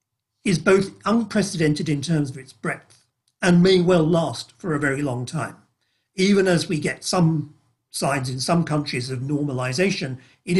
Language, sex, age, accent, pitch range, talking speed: English, male, 50-69, British, 135-180 Hz, 165 wpm